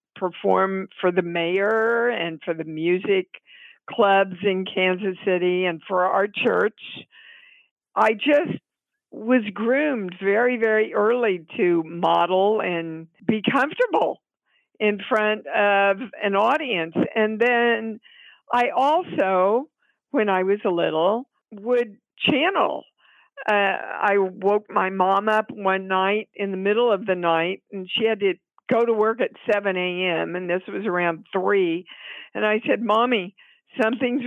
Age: 60-79